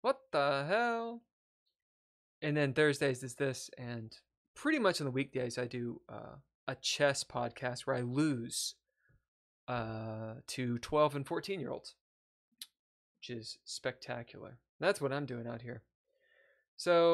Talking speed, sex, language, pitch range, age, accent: 135 wpm, male, English, 125-155 Hz, 20-39, American